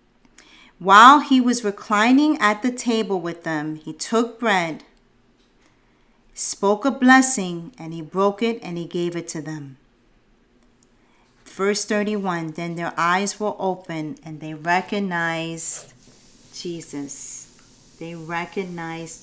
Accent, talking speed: American, 120 wpm